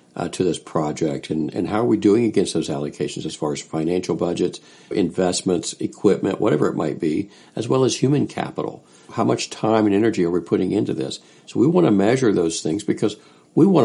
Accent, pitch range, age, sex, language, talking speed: American, 80-110 Hz, 60-79, male, English, 210 wpm